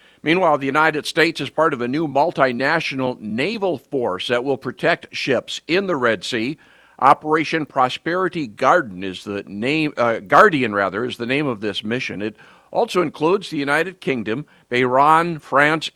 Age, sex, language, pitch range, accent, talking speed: 50-69, male, English, 120-160 Hz, American, 160 wpm